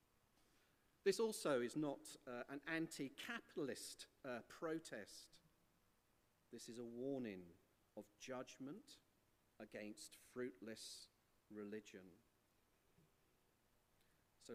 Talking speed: 80 wpm